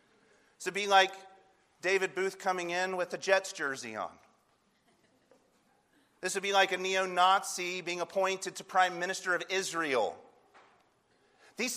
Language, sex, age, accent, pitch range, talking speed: English, male, 40-59, American, 135-215 Hz, 140 wpm